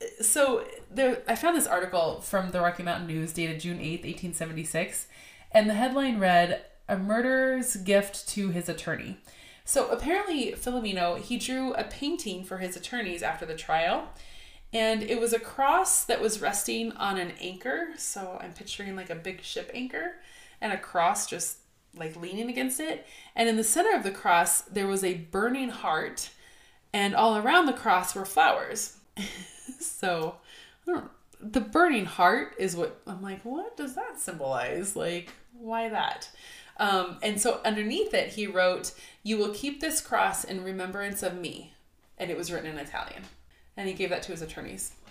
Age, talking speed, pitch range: 20-39, 170 wpm, 180-255 Hz